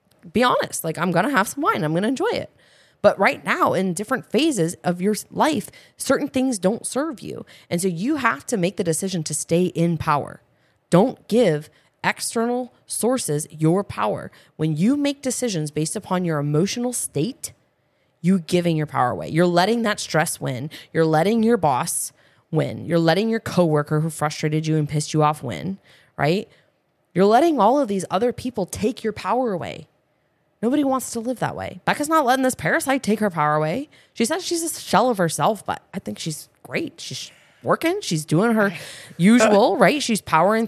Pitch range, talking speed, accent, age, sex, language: 155-220 Hz, 190 wpm, American, 20-39, female, English